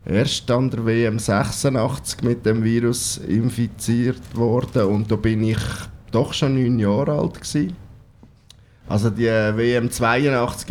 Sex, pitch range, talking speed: male, 105-130 Hz, 135 wpm